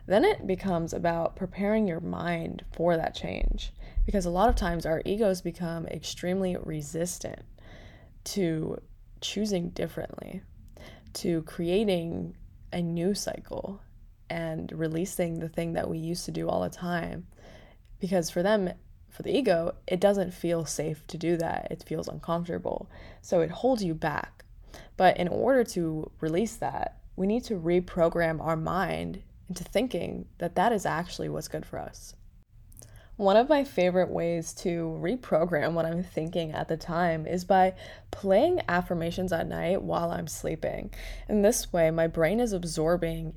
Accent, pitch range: American, 165-185 Hz